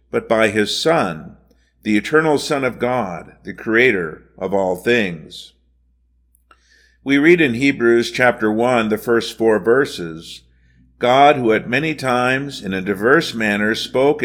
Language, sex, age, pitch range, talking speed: English, male, 50-69, 105-130 Hz, 145 wpm